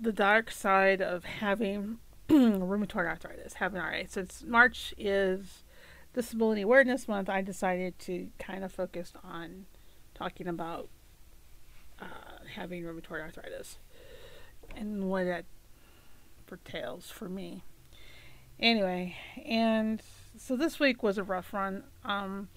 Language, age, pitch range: English, 40-59, 185-230 Hz